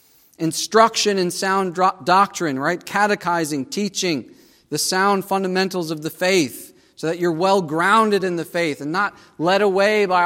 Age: 40-59